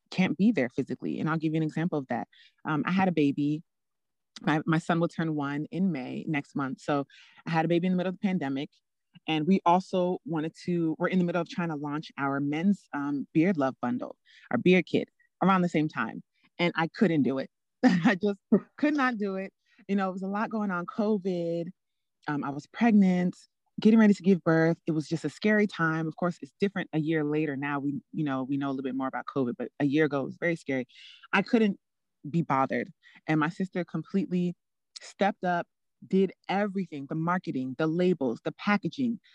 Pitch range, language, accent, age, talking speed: 155-195 Hz, English, American, 30-49, 220 wpm